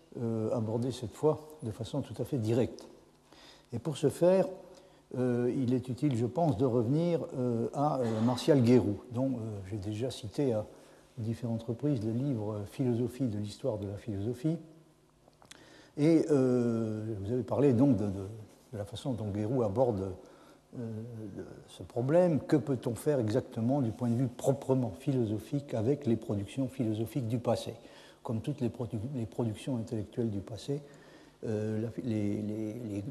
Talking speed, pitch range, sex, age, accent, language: 160 wpm, 110-140 Hz, male, 60-79, French, French